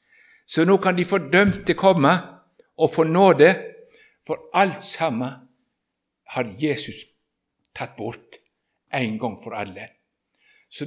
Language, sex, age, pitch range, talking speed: English, male, 60-79, 160-200 Hz, 120 wpm